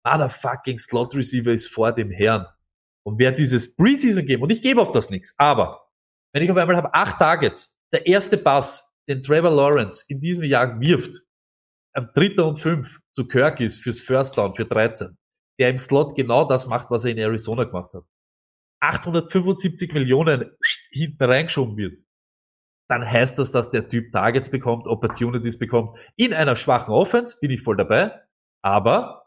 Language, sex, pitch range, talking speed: German, male, 120-170 Hz, 170 wpm